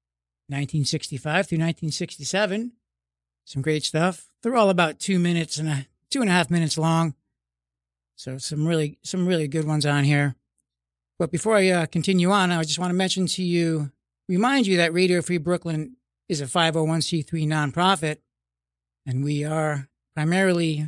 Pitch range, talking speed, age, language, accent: 140-185 Hz, 175 wpm, 60-79, English, American